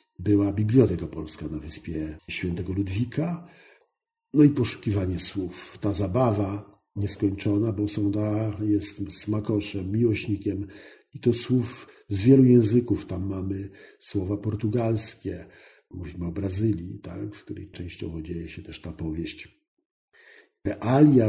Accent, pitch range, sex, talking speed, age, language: native, 90-110 Hz, male, 120 wpm, 50-69, Polish